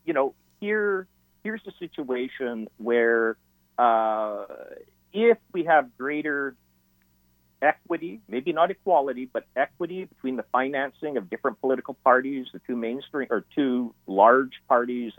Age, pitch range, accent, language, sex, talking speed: 50-69, 100-145 Hz, American, English, male, 125 wpm